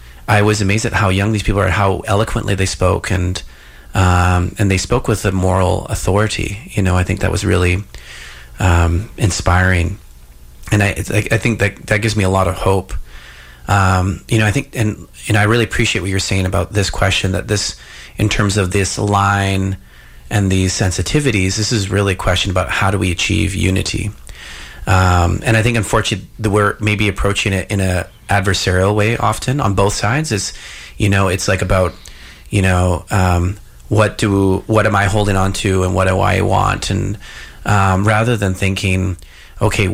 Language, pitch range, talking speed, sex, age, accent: English, 90-105 Hz, 190 wpm, male, 30-49, American